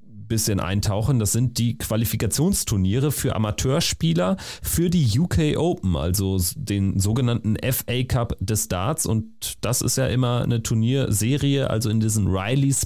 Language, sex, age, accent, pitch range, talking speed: German, male, 30-49, German, 105-125 Hz, 140 wpm